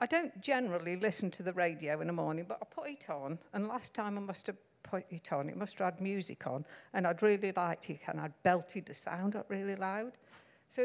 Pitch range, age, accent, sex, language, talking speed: 175-230 Hz, 50-69, British, female, English, 245 wpm